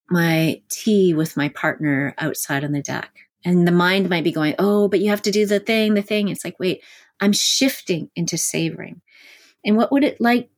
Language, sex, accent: English, female, American